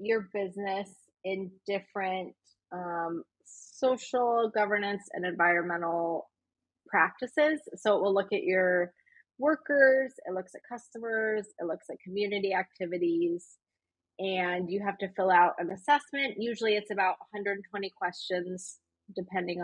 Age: 20-39